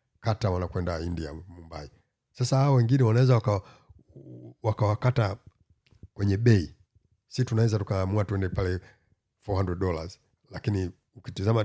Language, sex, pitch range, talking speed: Swahili, male, 90-115 Hz, 105 wpm